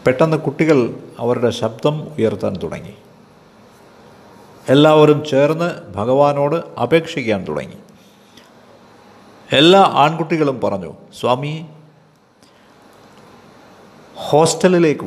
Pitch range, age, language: 120-175 Hz, 50-69, Malayalam